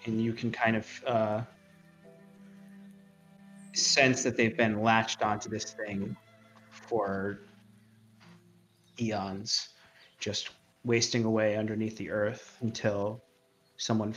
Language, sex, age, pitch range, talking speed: English, male, 30-49, 105-120 Hz, 100 wpm